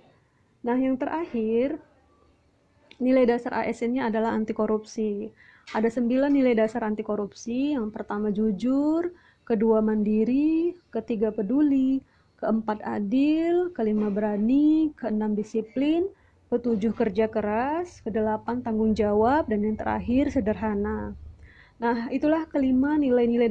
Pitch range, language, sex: 220-265 Hz, Indonesian, female